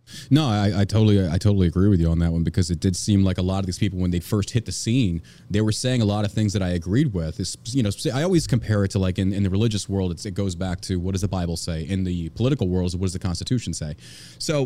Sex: male